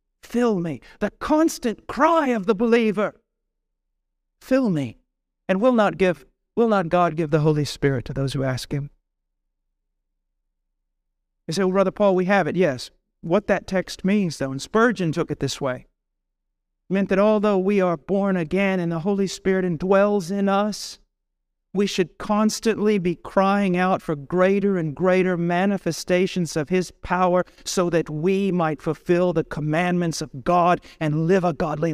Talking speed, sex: 165 wpm, male